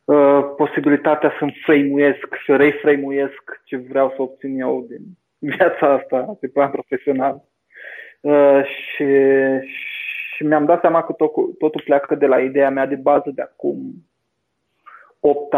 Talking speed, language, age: 145 wpm, Romanian, 20-39